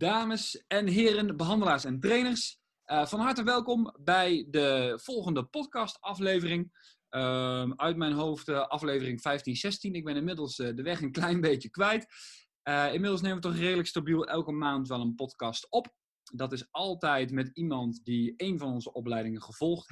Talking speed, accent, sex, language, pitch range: 170 wpm, Dutch, male, Dutch, 125-185 Hz